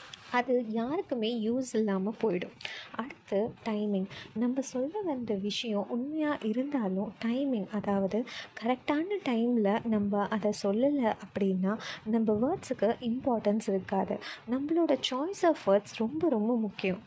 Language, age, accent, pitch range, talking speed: Tamil, 20-39, native, 205-260 Hz, 115 wpm